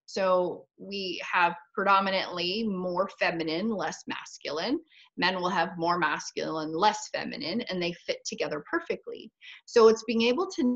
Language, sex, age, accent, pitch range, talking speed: English, female, 30-49, American, 180-225 Hz, 140 wpm